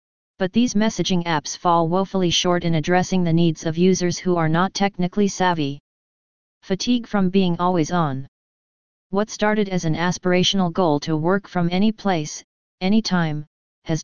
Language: English